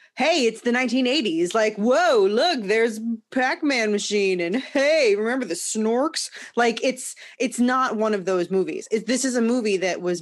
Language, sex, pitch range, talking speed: English, female, 185-255 Hz, 175 wpm